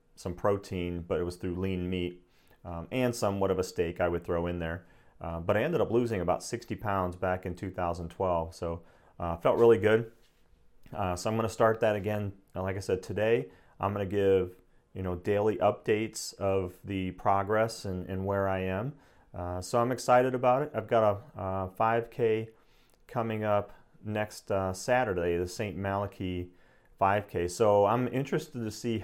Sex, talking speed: male, 185 wpm